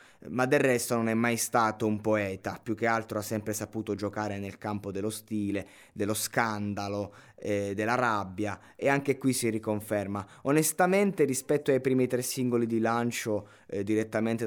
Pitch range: 100-120 Hz